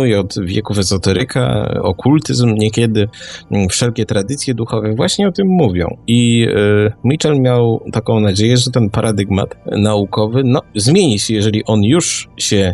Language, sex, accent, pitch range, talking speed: Polish, male, native, 100-130 Hz, 135 wpm